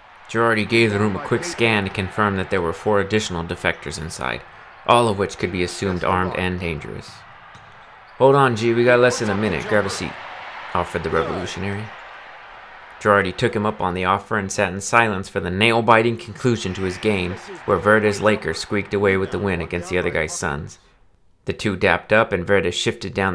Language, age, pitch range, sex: English, 30-49, 95-115 Hz, male